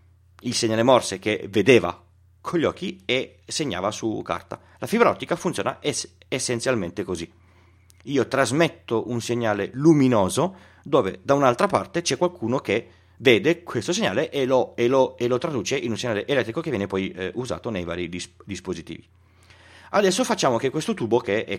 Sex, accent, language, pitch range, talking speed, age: male, native, Italian, 90-130 Hz, 155 wpm, 30-49